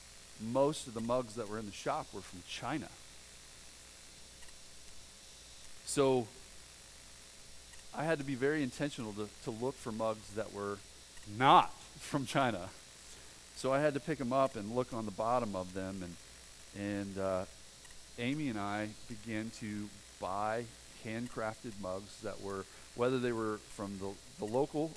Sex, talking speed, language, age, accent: male, 150 wpm, English, 40-59, American